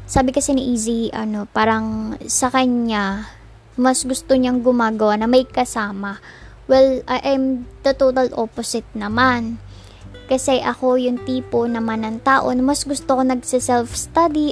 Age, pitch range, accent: 20-39, 205-250 Hz, native